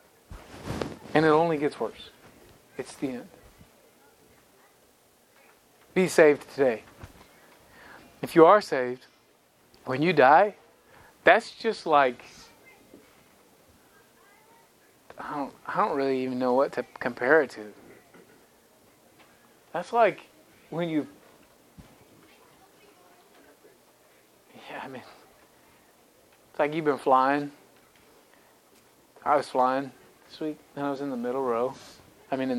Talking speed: 110 wpm